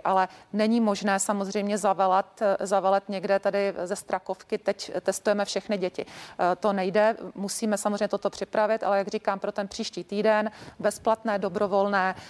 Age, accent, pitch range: 40-59, native, 195-210 Hz